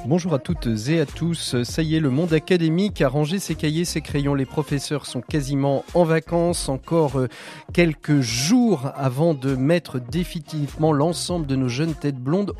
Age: 30-49